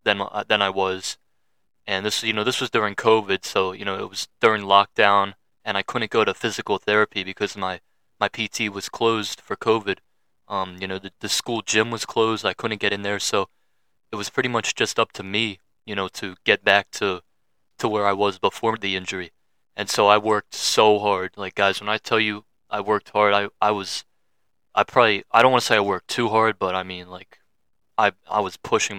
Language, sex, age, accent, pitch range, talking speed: English, male, 20-39, American, 95-110 Hz, 220 wpm